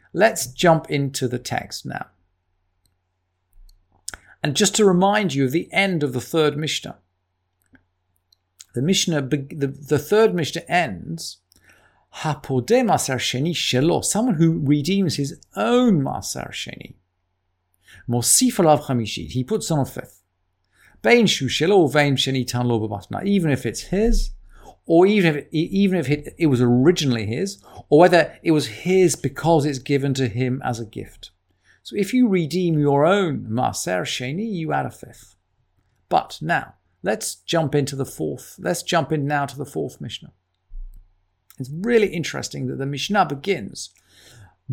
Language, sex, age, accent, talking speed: English, male, 50-69, British, 125 wpm